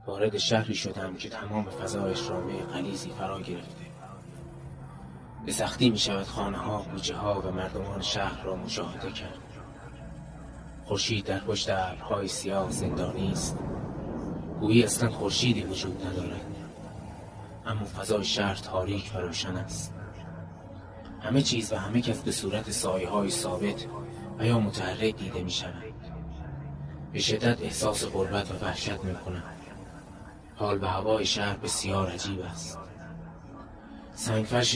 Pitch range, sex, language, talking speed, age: 95-110 Hz, male, Persian, 130 wpm, 30-49